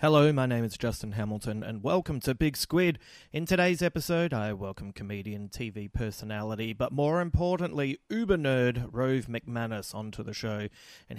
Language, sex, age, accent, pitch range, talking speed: English, male, 30-49, Australian, 110-145 Hz, 160 wpm